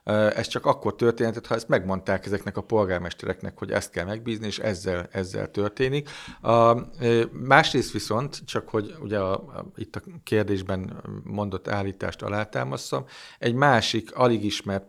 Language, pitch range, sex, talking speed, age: Hungarian, 95-115 Hz, male, 145 wpm, 50-69